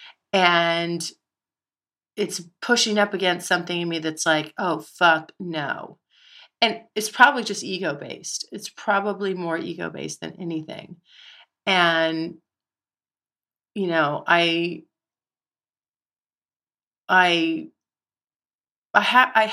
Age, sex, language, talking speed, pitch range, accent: 40-59, female, English, 100 wpm, 170-205 Hz, American